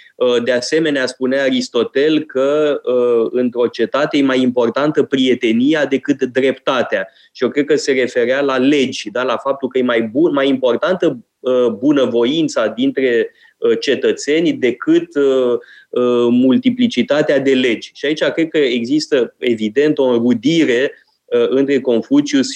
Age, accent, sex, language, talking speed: 20-39, native, male, Romanian, 125 wpm